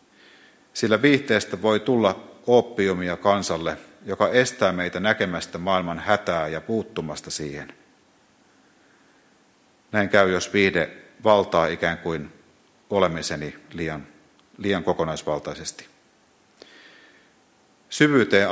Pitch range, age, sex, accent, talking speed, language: 85-105 Hz, 50-69, male, native, 90 wpm, Finnish